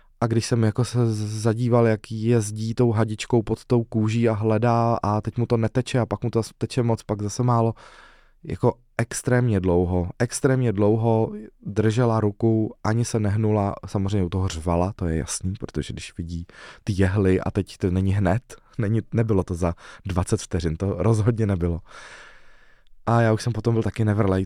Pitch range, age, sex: 95-115 Hz, 20-39, male